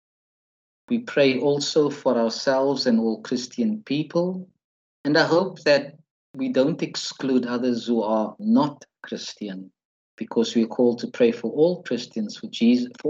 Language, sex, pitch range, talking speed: English, male, 110-145 Hz, 145 wpm